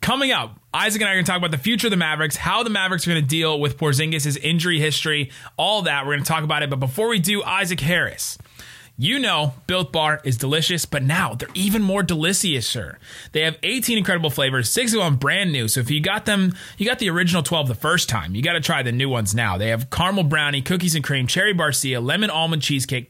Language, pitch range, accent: English, 135-185 Hz, American